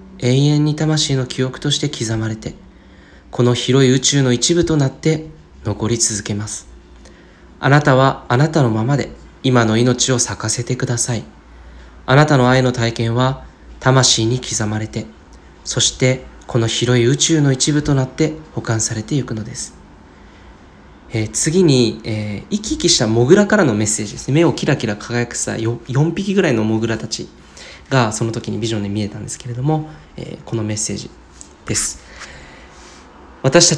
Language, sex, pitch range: Japanese, male, 105-140 Hz